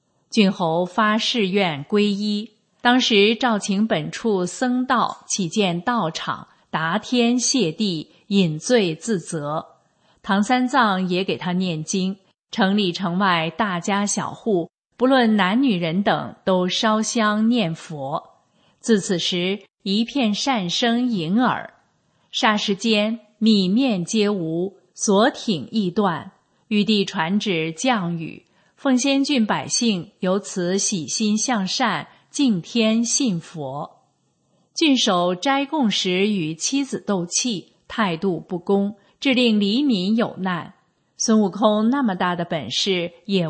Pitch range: 180-225 Hz